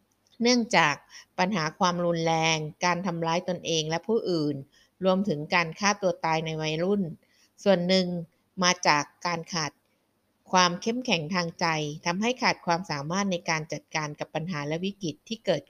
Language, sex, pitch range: Thai, female, 160-195 Hz